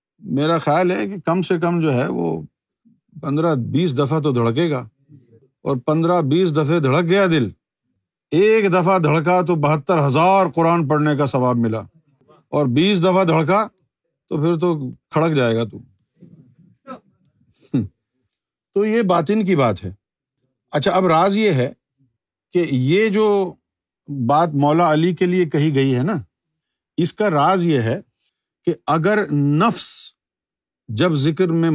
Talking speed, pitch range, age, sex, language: 150 wpm, 135-185 Hz, 50-69, male, Urdu